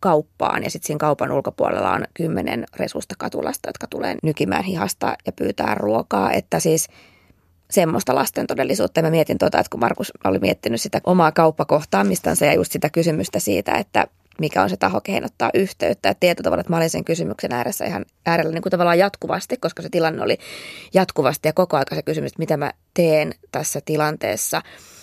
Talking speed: 175 wpm